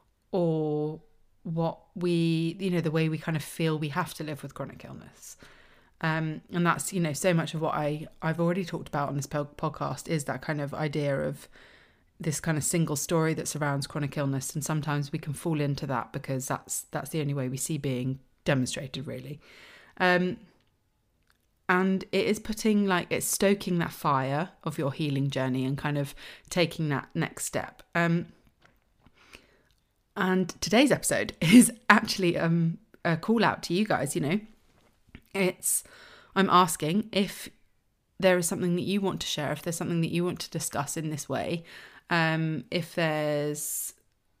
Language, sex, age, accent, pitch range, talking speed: English, female, 30-49, British, 145-180 Hz, 175 wpm